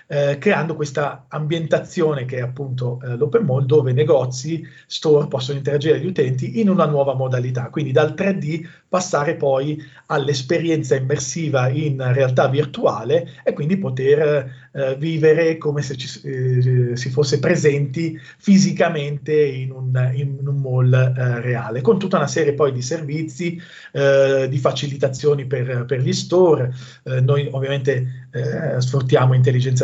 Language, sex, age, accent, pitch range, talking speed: Italian, male, 40-59, native, 130-160 Hz, 135 wpm